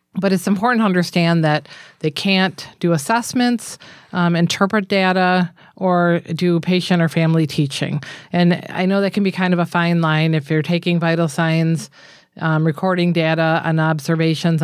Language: English